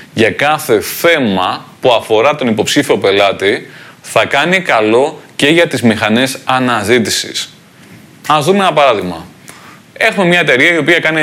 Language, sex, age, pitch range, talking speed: Greek, male, 20-39, 110-165 Hz, 140 wpm